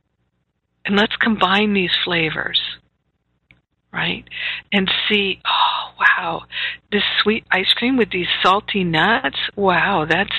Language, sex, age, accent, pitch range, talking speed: English, female, 50-69, American, 180-210 Hz, 115 wpm